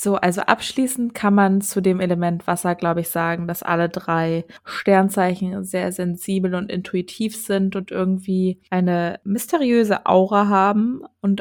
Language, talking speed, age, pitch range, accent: German, 145 wpm, 20-39, 180-210 Hz, German